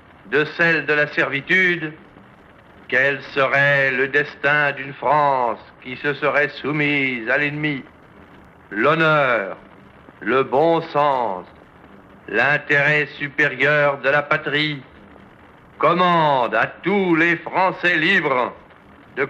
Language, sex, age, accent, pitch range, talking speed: French, male, 60-79, French, 145-180 Hz, 105 wpm